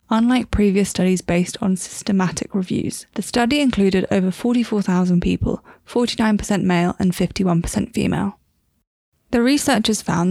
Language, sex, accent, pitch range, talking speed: English, female, British, 190-230 Hz, 120 wpm